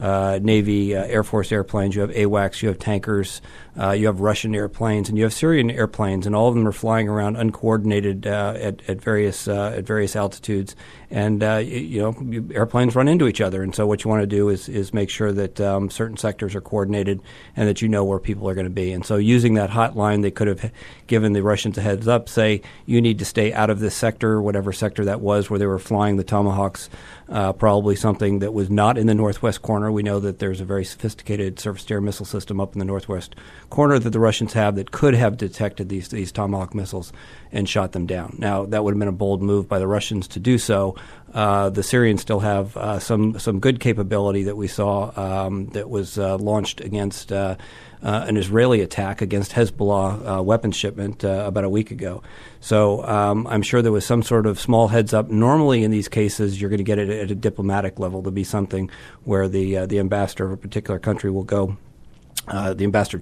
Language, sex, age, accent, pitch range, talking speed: English, male, 50-69, American, 100-110 Hz, 225 wpm